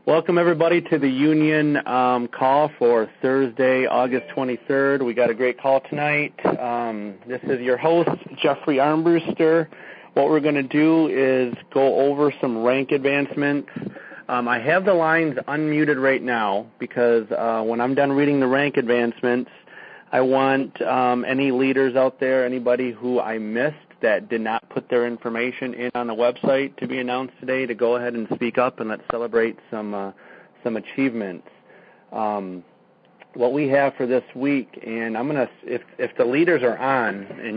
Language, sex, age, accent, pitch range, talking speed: English, male, 40-59, American, 120-140 Hz, 170 wpm